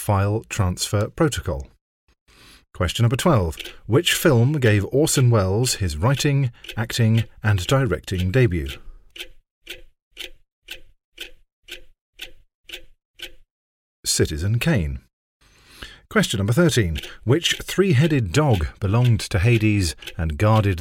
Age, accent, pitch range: 40-59, British, 90-125 Hz